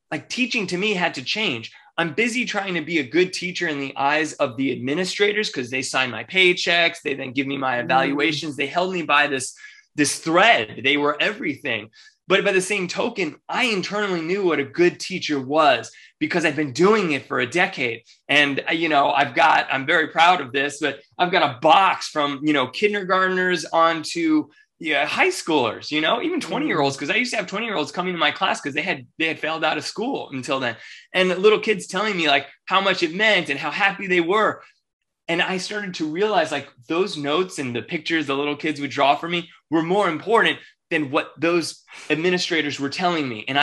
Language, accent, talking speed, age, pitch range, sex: English, American, 220 wpm, 20-39, 140-190 Hz, male